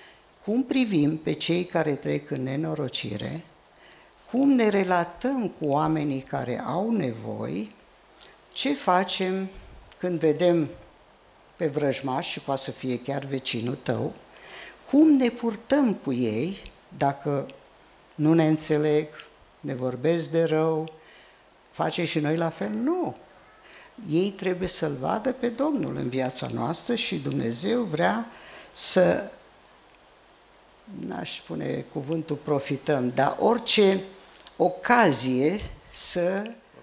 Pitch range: 145-215 Hz